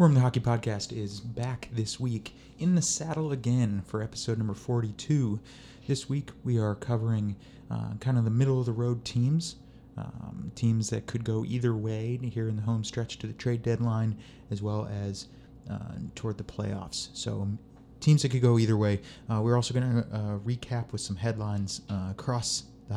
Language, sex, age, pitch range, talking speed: English, male, 30-49, 100-125 Hz, 180 wpm